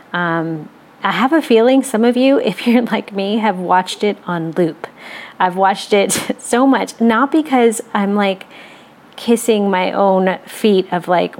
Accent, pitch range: American, 175-220 Hz